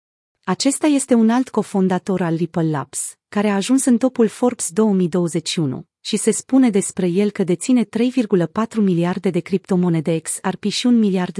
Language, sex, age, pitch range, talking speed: Romanian, female, 30-49, 175-225 Hz, 160 wpm